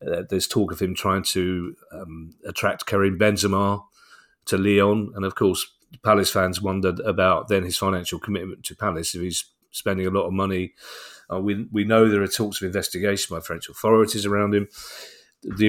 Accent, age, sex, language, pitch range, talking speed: British, 40-59, male, English, 95-110 Hz, 185 wpm